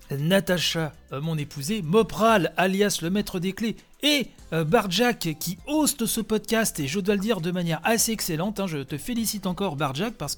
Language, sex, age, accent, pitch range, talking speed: French, male, 40-59, French, 160-220 Hz, 190 wpm